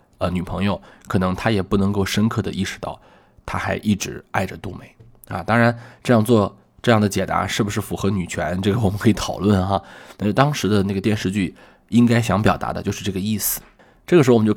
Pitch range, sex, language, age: 95-110 Hz, male, Chinese, 20-39